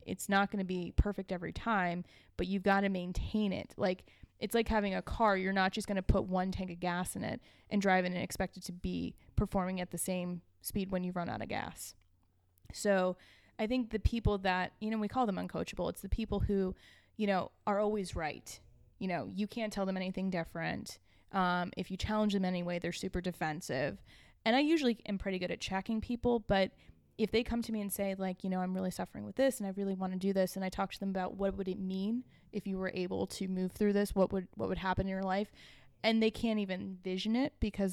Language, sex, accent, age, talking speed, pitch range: English, female, American, 20-39, 245 wpm, 185-210 Hz